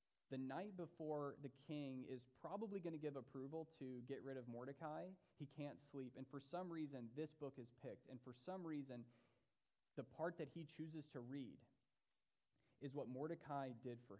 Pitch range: 125-155 Hz